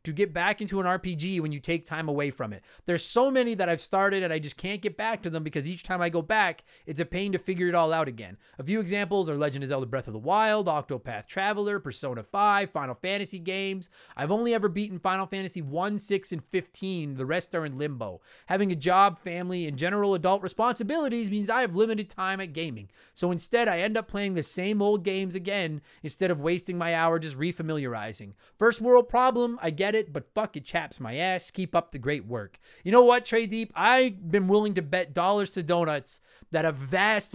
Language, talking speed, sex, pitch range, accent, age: English, 225 wpm, male, 165-220 Hz, American, 30-49